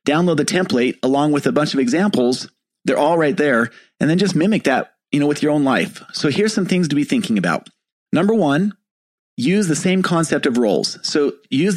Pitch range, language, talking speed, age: 140-195 Hz, English, 215 wpm, 30-49